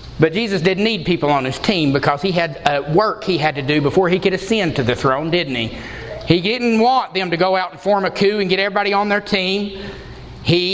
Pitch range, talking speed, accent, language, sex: 165-225 Hz, 245 wpm, American, English, male